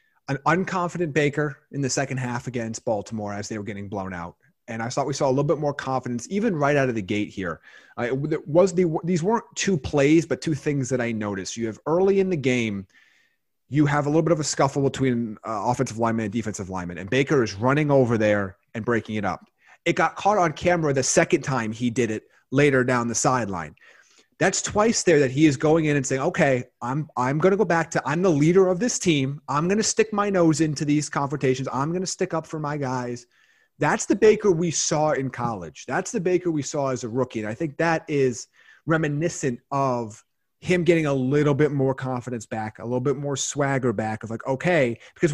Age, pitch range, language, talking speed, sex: 30-49, 120-170 Hz, English, 225 wpm, male